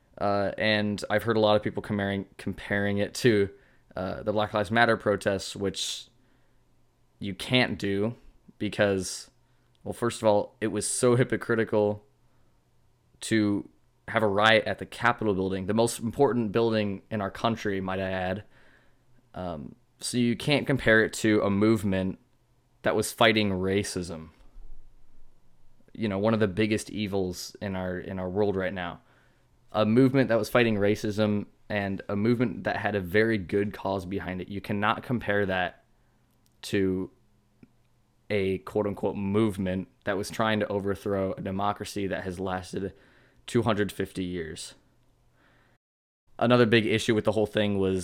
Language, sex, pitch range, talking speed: English, male, 95-110 Hz, 150 wpm